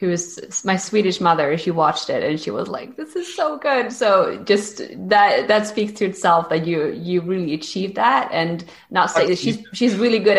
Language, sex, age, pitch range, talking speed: English, female, 20-39, 160-195 Hz, 200 wpm